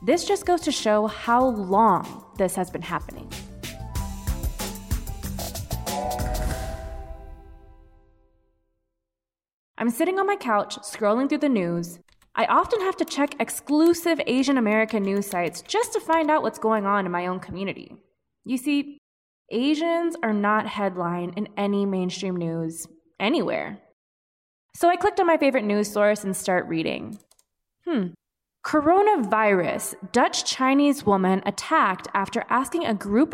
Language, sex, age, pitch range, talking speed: English, female, 20-39, 185-295 Hz, 130 wpm